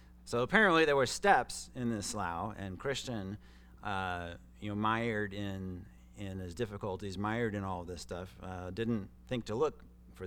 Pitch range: 85-115 Hz